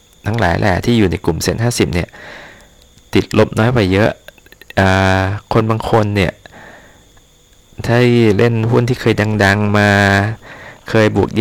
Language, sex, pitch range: Thai, male, 100-120 Hz